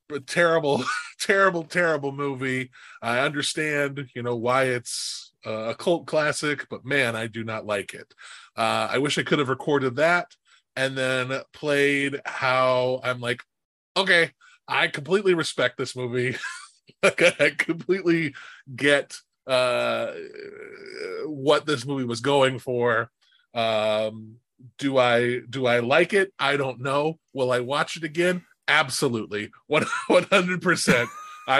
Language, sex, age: English, male, 20-39